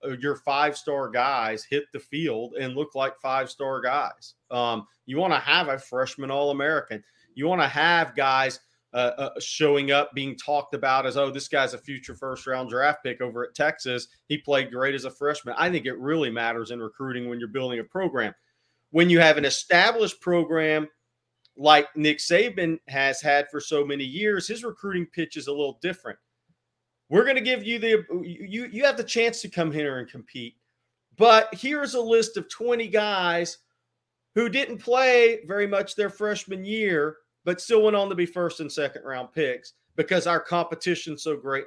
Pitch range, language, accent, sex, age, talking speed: 135-180 Hz, English, American, male, 40-59, 190 wpm